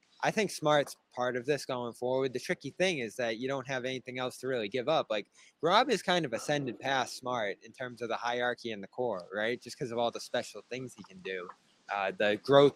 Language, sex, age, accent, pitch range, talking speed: English, male, 20-39, American, 120-150 Hz, 245 wpm